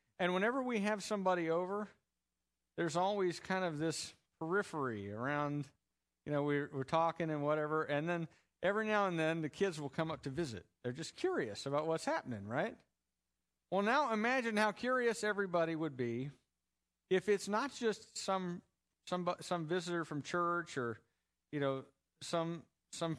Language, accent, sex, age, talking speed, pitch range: English, American, male, 50-69, 165 wpm, 130-195 Hz